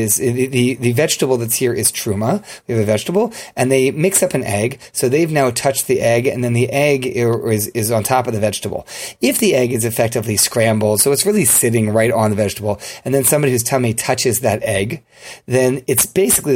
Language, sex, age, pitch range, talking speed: English, male, 30-49, 115-140 Hz, 215 wpm